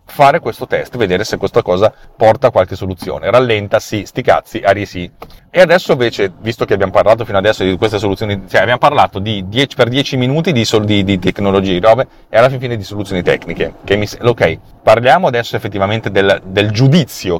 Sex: male